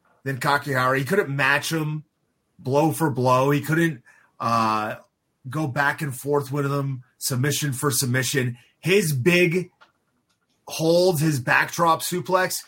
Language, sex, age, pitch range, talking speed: English, male, 30-49, 120-155 Hz, 130 wpm